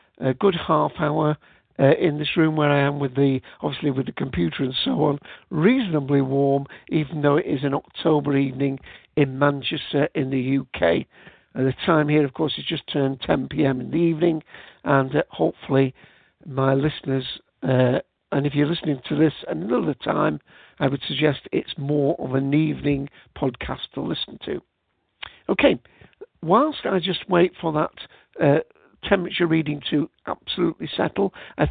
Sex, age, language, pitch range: male, 60-79, English, 140-170 Hz